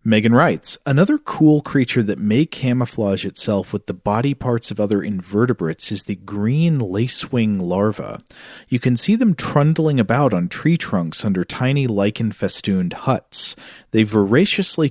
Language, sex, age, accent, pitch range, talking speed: English, male, 40-59, American, 100-140 Hz, 150 wpm